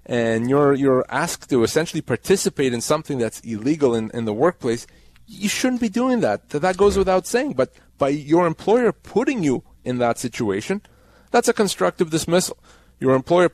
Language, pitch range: English, 125-170 Hz